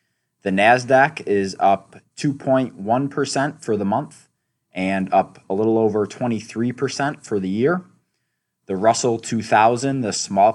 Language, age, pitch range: English, 20-39, 95-125 Hz